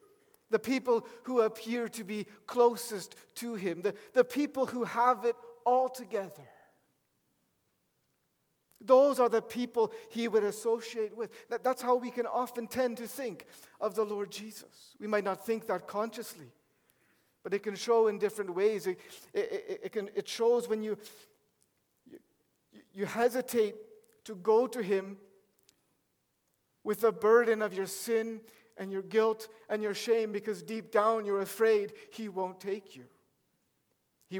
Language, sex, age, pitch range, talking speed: English, male, 50-69, 210-250 Hz, 145 wpm